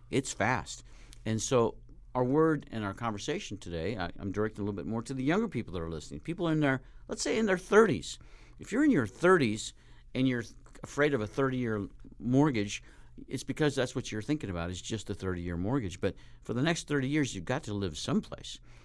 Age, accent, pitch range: 50-69, American, 100-140 Hz